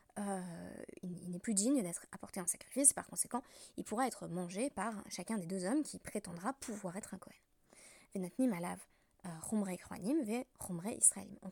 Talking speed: 140 wpm